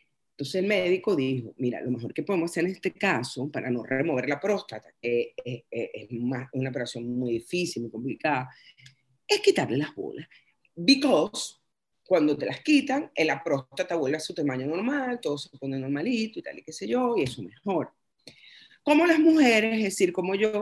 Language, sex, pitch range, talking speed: Spanish, female, 145-225 Hz, 195 wpm